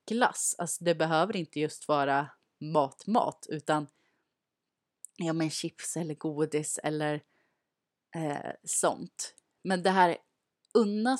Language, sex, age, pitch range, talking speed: Swedish, female, 30-49, 150-195 Hz, 120 wpm